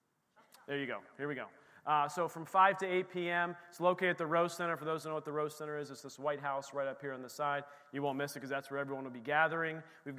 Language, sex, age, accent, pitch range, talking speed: English, male, 30-49, American, 140-175 Hz, 300 wpm